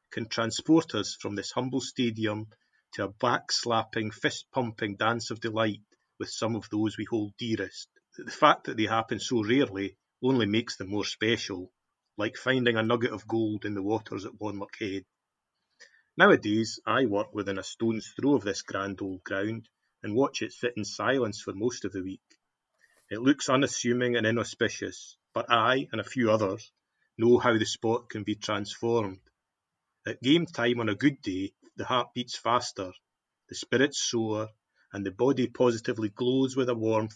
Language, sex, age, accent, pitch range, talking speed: English, male, 30-49, British, 105-125 Hz, 175 wpm